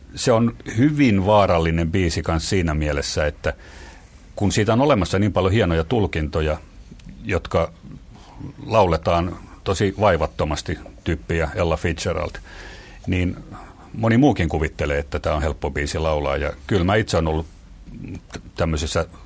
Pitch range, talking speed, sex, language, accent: 80-105 Hz, 125 wpm, male, Finnish, native